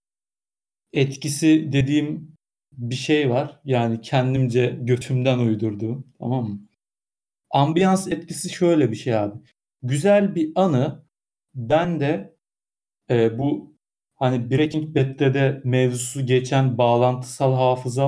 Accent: native